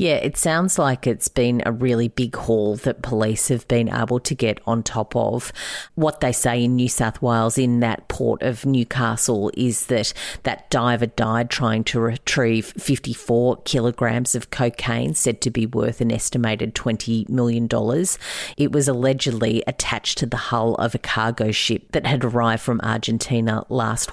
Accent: Australian